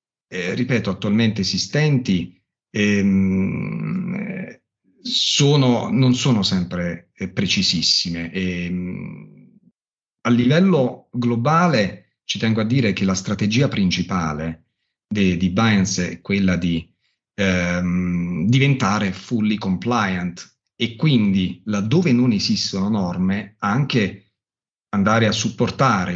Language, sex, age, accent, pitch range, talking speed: Italian, male, 40-59, native, 90-120 Hz, 100 wpm